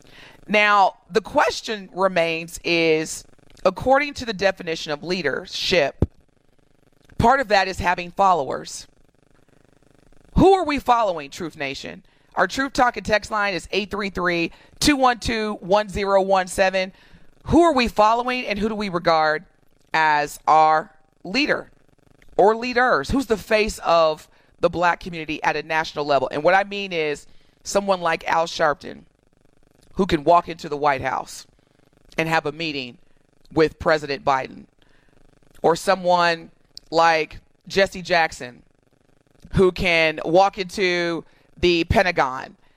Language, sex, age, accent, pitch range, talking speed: English, female, 40-59, American, 145-210 Hz, 125 wpm